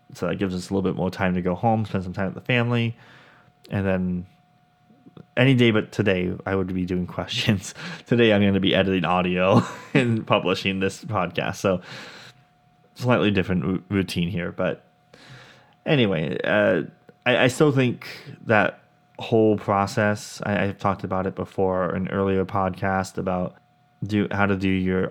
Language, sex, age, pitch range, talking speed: English, male, 20-39, 95-110 Hz, 170 wpm